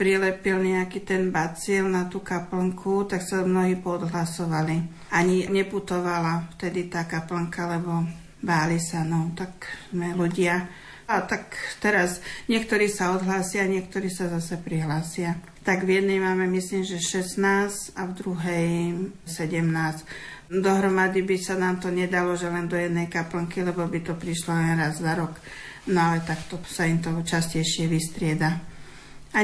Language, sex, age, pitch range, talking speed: Slovak, female, 50-69, 170-185 Hz, 145 wpm